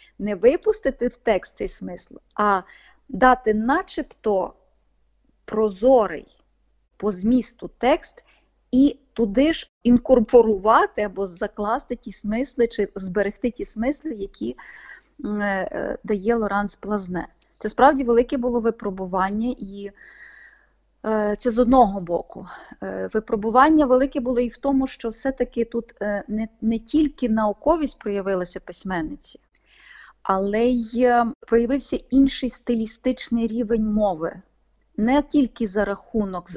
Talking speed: 105 wpm